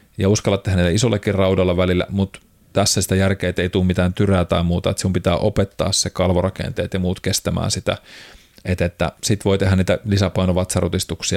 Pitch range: 90-105 Hz